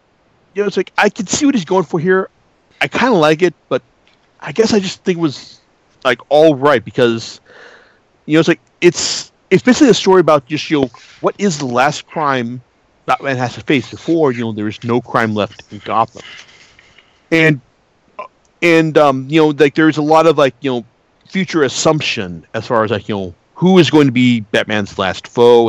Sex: male